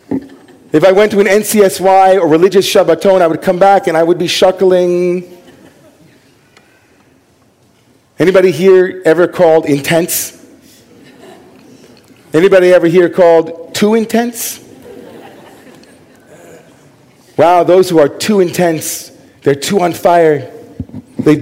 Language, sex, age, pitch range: English, male, 40-59, 135-180 Hz